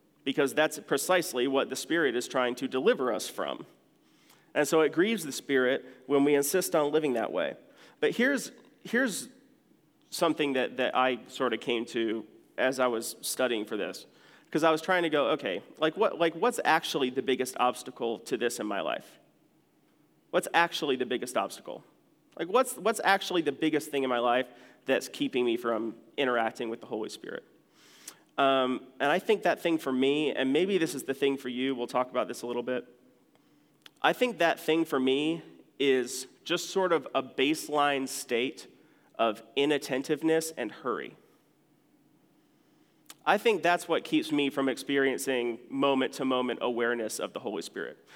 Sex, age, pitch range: male, 30-49, 125-155 Hz